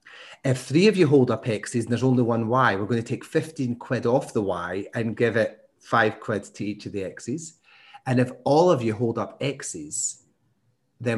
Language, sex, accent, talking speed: English, male, British, 215 wpm